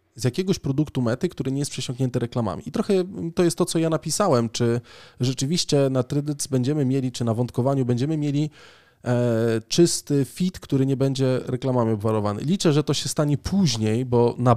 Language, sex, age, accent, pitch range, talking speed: Polish, male, 20-39, native, 125-155 Hz, 175 wpm